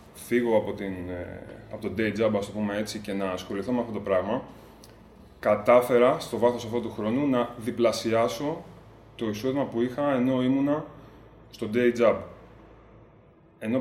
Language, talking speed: Greek, 150 wpm